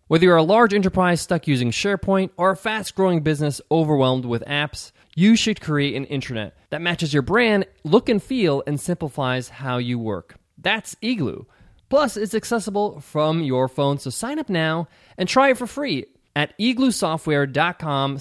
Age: 20-39